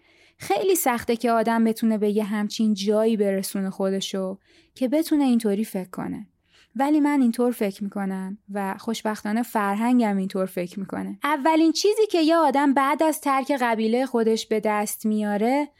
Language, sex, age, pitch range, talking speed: Persian, female, 20-39, 210-280 Hz, 150 wpm